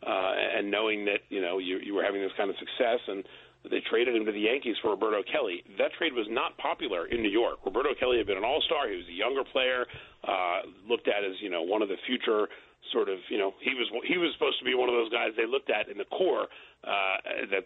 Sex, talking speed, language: male, 260 wpm, English